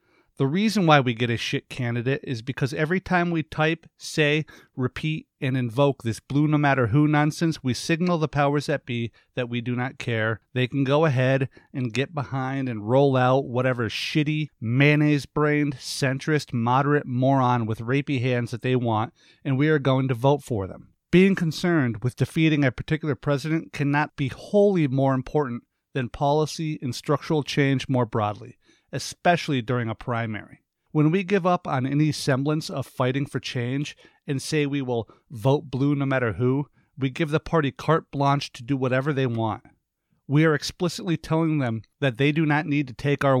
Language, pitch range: English, 125-150 Hz